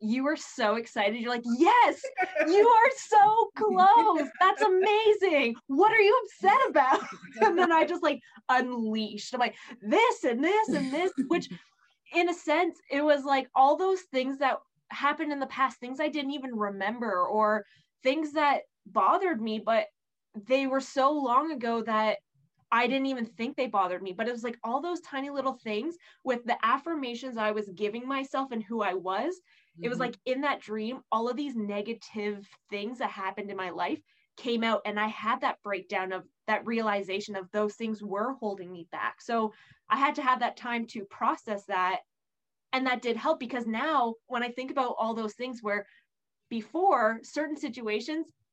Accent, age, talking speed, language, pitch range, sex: American, 20-39, 185 wpm, English, 215-295 Hz, female